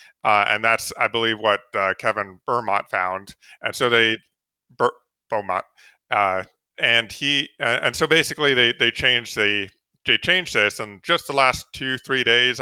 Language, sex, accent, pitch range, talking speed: English, male, American, 110-145 Hz, 165 wpm